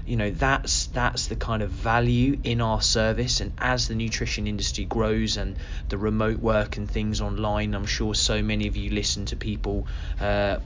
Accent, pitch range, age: British, 95-110 Hz, 20-39